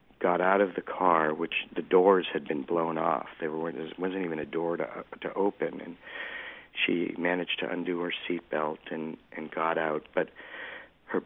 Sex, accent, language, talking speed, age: male, American, English, 170 wpm, 50-69